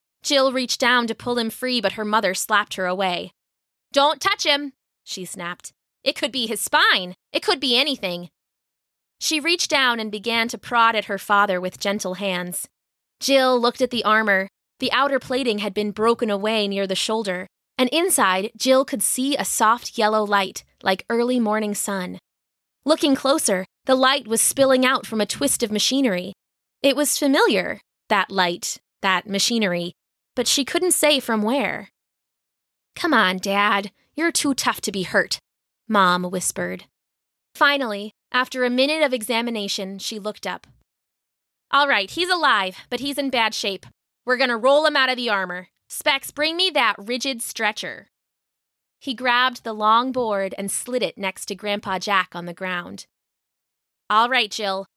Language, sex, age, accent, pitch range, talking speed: English, female, 20-39, American, 200-270 Hz, 170 wpm